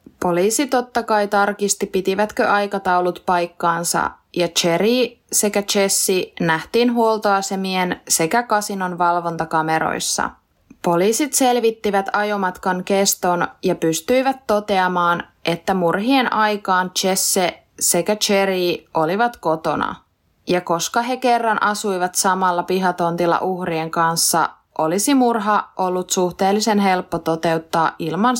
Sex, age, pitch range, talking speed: female, 20-39, 175-210 Hz, 100 wpm